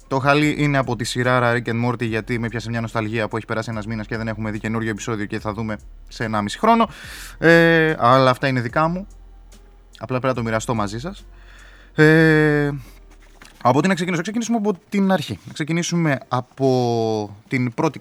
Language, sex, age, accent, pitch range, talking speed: Greek, male, 20-39, native, 115-145 Hz, 190 wpm